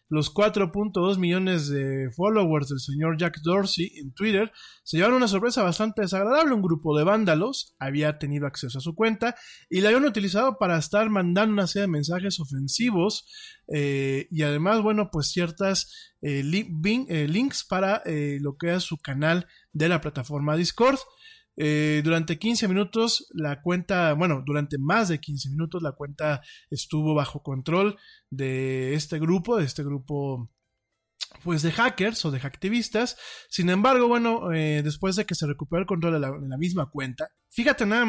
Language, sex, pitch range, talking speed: Spanish, male, 150-210 Hz, 165 wpm